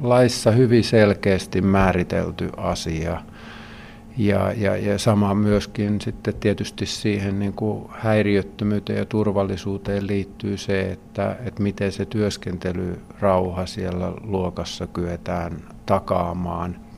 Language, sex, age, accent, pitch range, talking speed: Finnish, male, 50-69, native, 90-110 Hz, 100 wpm